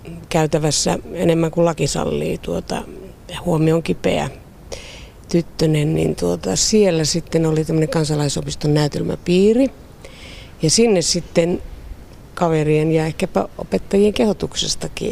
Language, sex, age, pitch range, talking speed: Finnish, female, 50-69, 160-200 Hz, 95 wpm